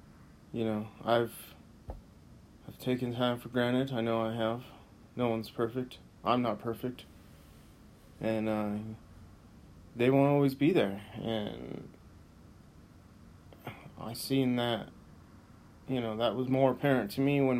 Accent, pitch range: American, 105-130 Hz